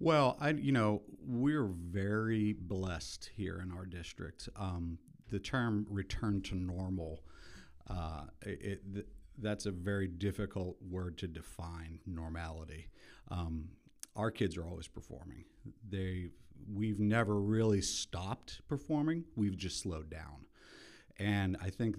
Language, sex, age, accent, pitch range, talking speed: English, male, 50-69, American, 90-125 Hz, 130 wpm